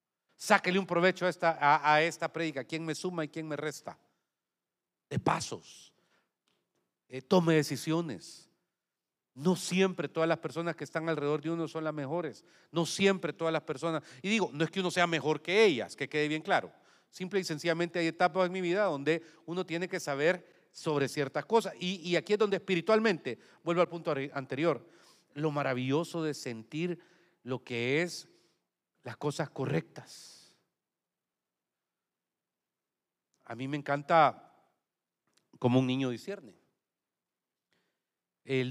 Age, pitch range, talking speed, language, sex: 40-59, 140-170 Hz, 150 wpm, Spanish, male